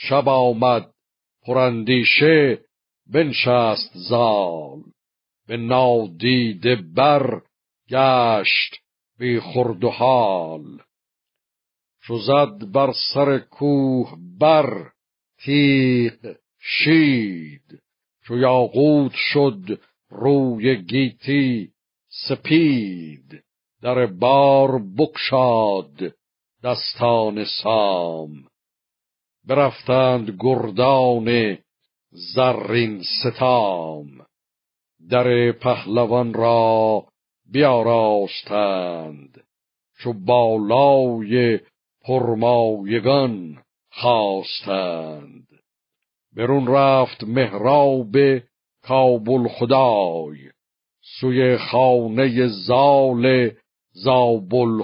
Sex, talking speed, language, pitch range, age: male, 55 wpm, Persian, 110-130 Hz, 60-79